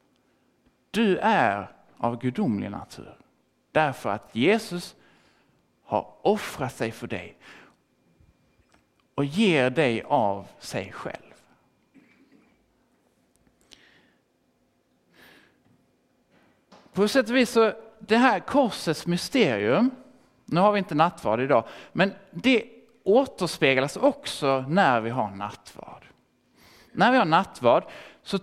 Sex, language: male, Swedish